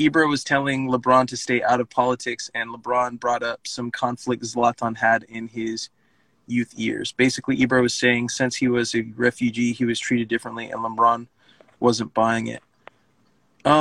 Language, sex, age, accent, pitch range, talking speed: English, male, 20-39, American, 125-165 Hz, 175 wpm